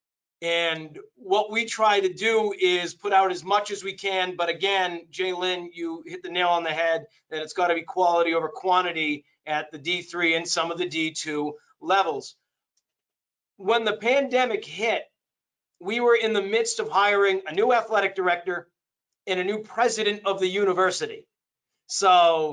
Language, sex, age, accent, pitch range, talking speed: English, male, 40-59, American, 175-215 Hz, 170 wpm